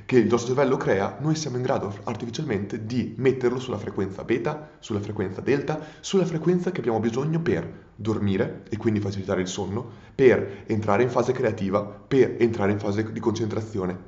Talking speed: 175 wpm